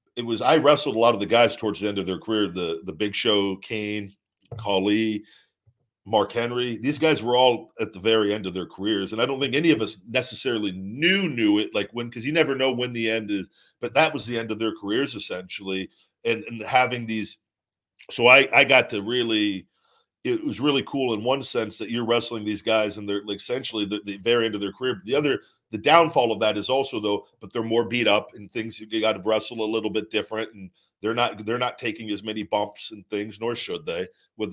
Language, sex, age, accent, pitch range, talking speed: English, male, 40-59, American, 105-120 Hz, 240 wpm